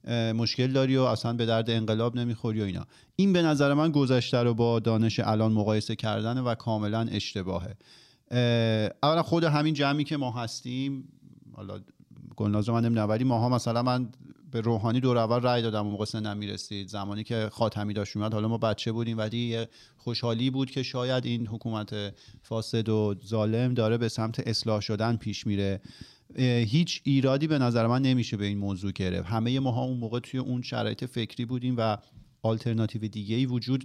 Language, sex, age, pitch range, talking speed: Persian, male, 40-59, 110-130 Hz, 175 wpm